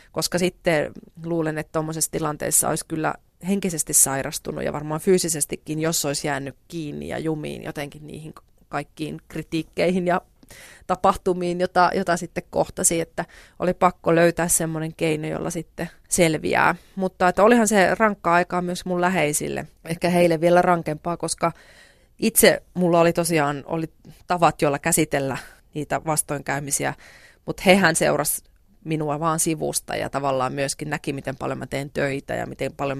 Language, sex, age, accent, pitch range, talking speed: Finnish, female, 30-49, native, 145-175 Hz, 145 wpm